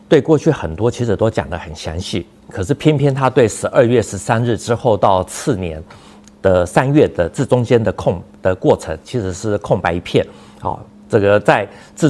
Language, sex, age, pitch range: Chinese, male, 50-69, 95-125 Hz